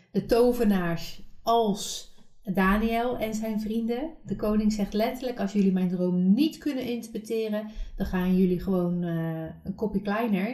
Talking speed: 150 wpm